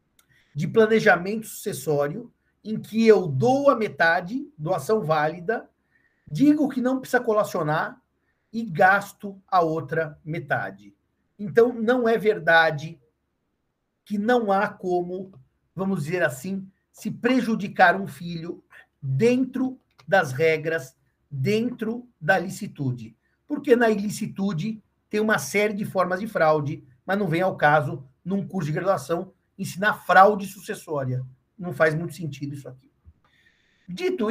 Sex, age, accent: male, 50-69, Brazilian